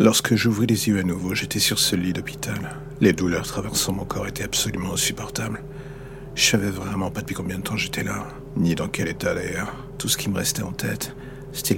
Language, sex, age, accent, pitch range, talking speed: French, male, 60-79, French, 100-125 Hz, 215 wpm